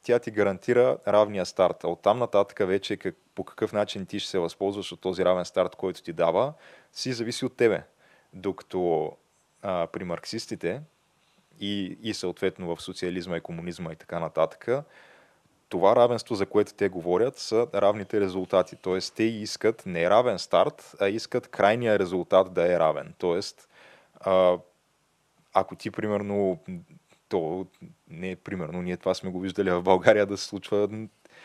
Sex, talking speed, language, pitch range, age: male, 155 wpm, Bulgarian, 90-110 Hz, 20-39